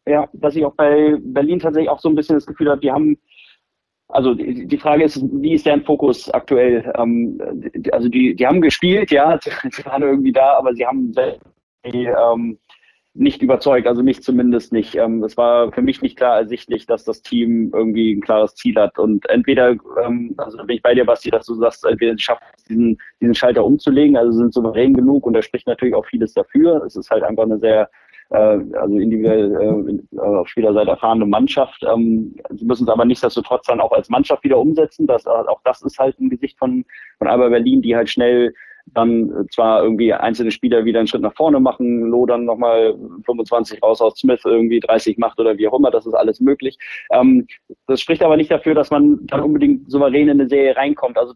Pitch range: 115-155 Hz